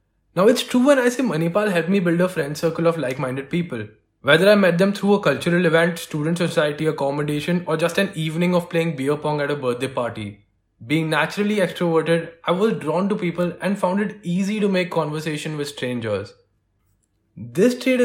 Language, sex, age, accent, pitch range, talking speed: English, male, 20-39, Indian, 140-190 Hz, 195 wpm